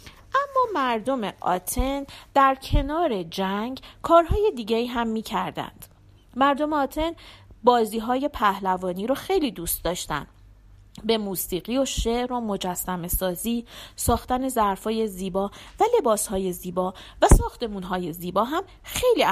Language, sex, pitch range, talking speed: Persian, female, 175-270 Hz, 115 wpm